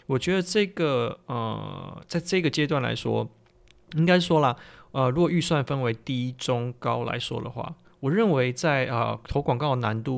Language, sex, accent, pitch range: Chinese, male, native, 120-160 Hz